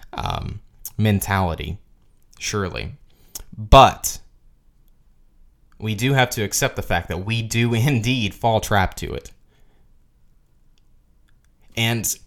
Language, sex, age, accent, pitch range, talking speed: English, male, 20-39, American, 95-130 Hz, 100 wpm